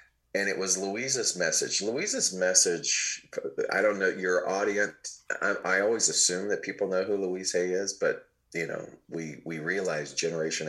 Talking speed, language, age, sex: 170 wpm, English, 30-49, male